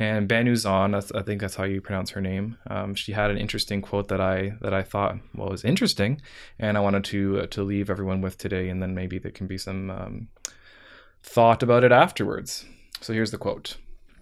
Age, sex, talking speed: 20-39, male, 215 wpm